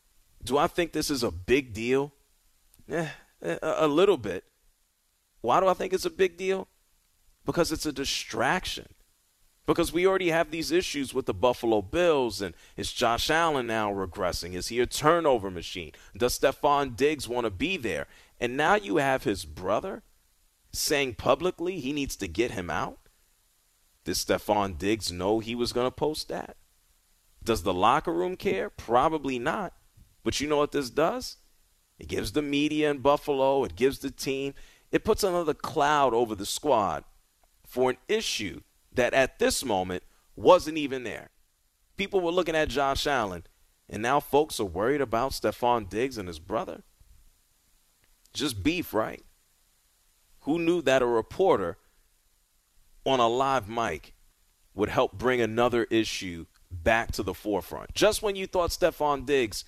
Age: 40-59